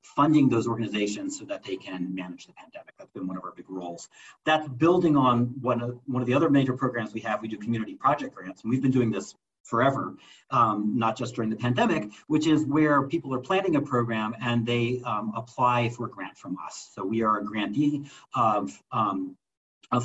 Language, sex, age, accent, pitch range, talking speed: English, male, 40-59, American, 110-140 Hz, 210 wpm